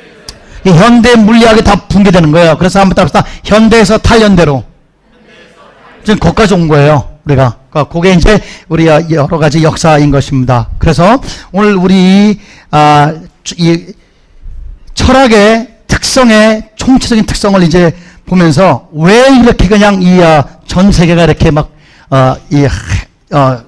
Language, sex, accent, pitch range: Korean, male, native, 150-205 Hz